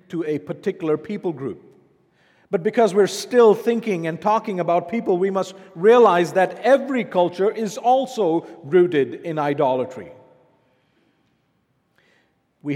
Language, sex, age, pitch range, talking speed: English, male, 50-69, 150-200 Hz, 120 wpm